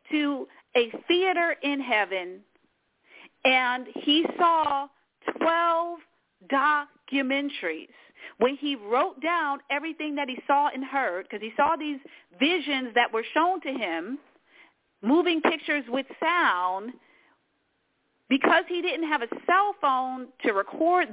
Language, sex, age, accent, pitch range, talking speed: English, female, 40-59, American, 235-320 Hz, 120 wpm